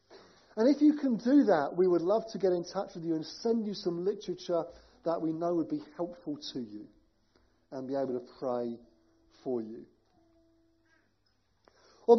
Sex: male